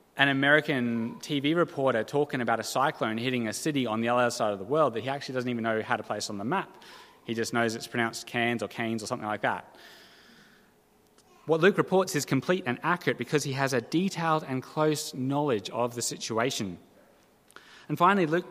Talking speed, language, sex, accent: 205 wpm, English, male, Australian